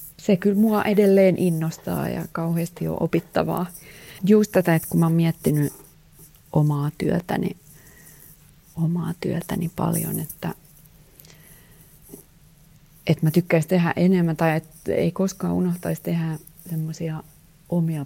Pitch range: 155-185 Hz